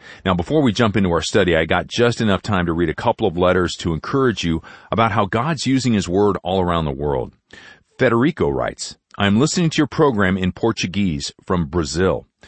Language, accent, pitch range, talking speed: English, American, 85-110 Hz, 200 wpm